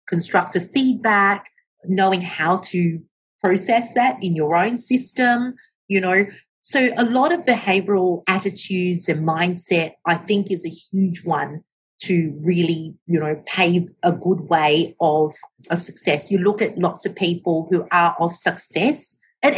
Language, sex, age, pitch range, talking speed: English, female, 40-59, 165-200 Hz, 150 wpm